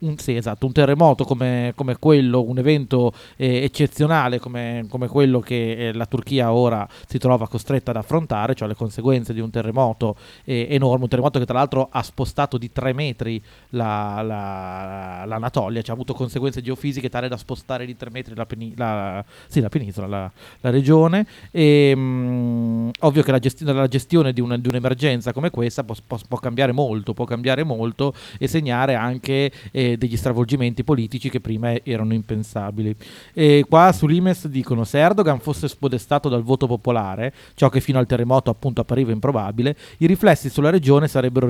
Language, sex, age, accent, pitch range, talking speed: Italian, male, 30-49, native, 120-145 Hz, 180 wpm